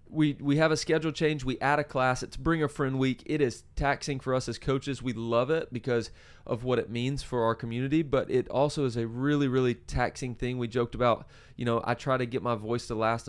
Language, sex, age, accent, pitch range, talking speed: English, male, 30-49, American, 120-135 Hz, 250 wpm